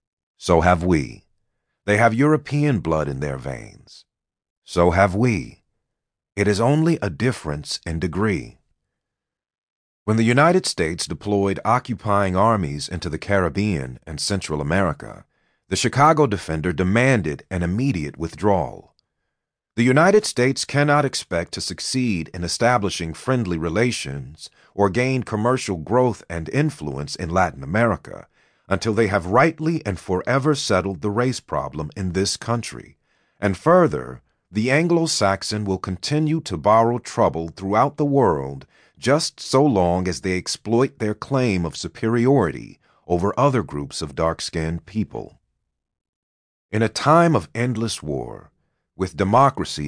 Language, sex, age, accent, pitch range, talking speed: English, male, 40-59, American, 85-125 Hz, 130 wpm